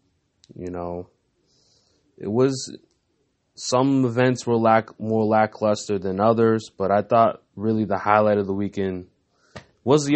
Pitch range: 95-120 Hz